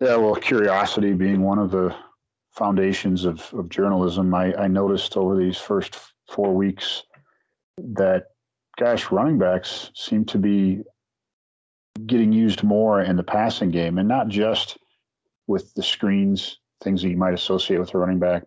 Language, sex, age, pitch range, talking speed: English, male, 40-59, 90-105 Hz, 155 wpm